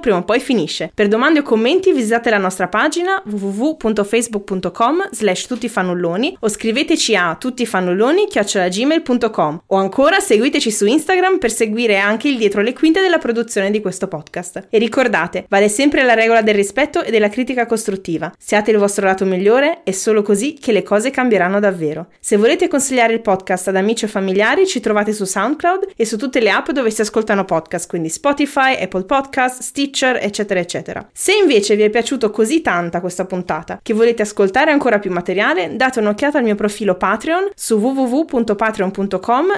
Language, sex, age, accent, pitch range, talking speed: Italian, female, 20-39, native, 200-270 Hz, 175 wpm